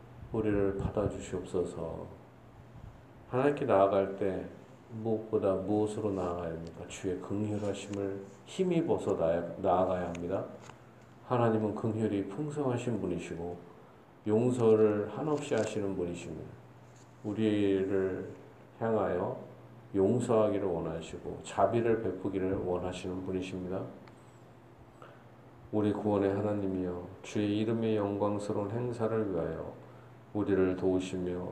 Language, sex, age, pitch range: Korean, male, 40-59, 95-115 Hz